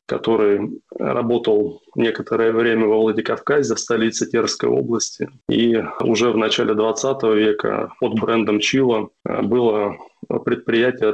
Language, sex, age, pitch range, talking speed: Russian, male, 20-39, 110-125 Hz, 115 wpm